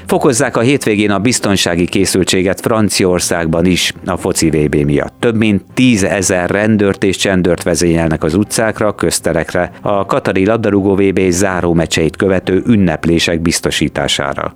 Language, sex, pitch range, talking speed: Hungarian, male, 85-105 Hz, 130 wpm